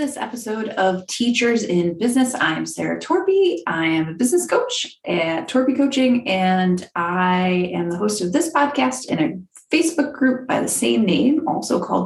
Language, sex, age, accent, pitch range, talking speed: English, female, 30-49, American, 185-280 Hz, 175 wpm